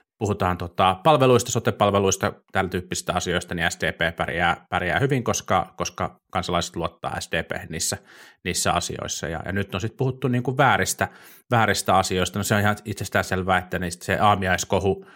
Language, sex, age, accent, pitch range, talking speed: Finnish, male, 30-49, native, 90-110 Hz, 155 wpm